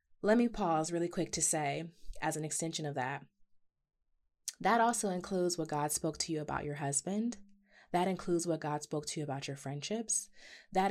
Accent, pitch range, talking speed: American, 150-200 Hz, 185 wpm